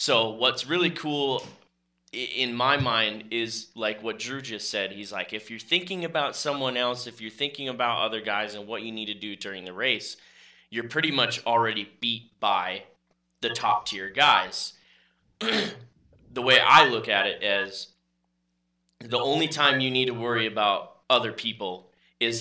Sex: male